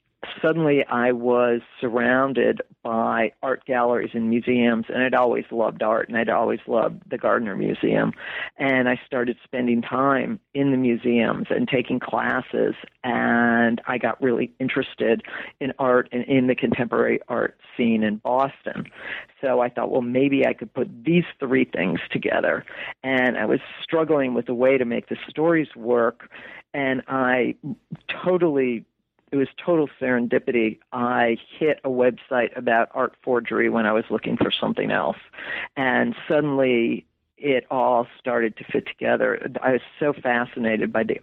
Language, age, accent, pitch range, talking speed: English, 50-69, American, 120-135 Hz, 155 wpm